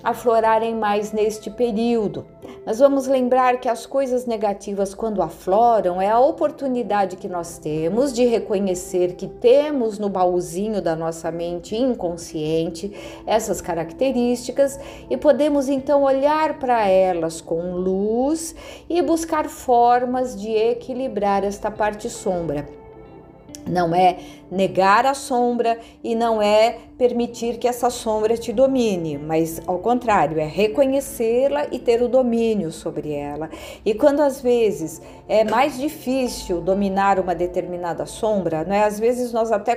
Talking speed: 135 wpm